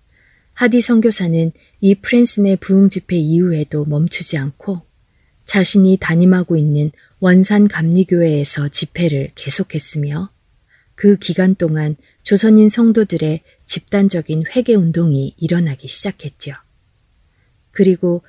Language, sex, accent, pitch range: Korean, female, native, 150-195 Hz